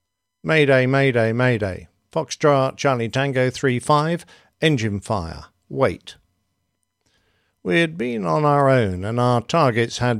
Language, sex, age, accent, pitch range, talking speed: English, male, 50-69, British, 110-140 Hz, 120 wpm